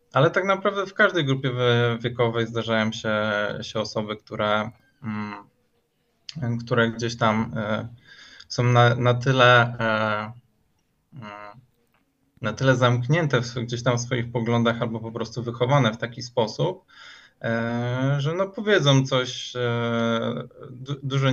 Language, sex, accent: Polish, male, native